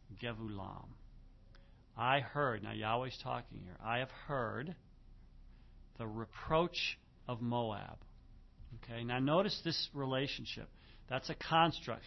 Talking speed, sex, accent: 110 wpm, male, American